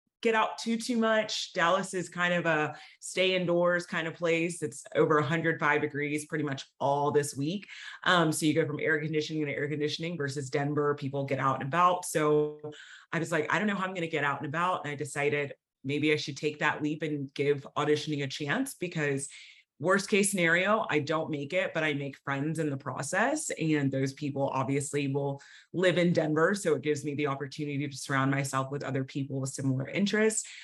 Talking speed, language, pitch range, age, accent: 210 wpm, English, 140-165 Hz, 30-49, American